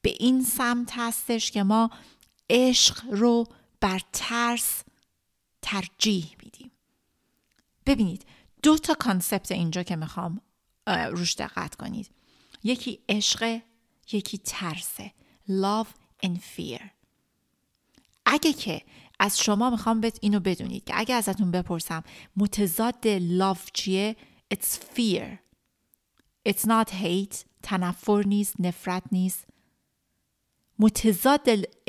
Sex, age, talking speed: female, 30-49, 100 wpm